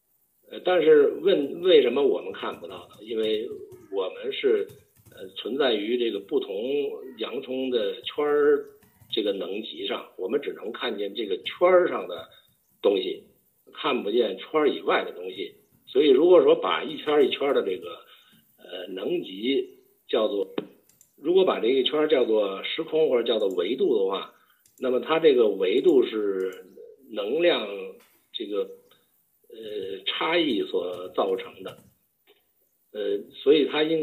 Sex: male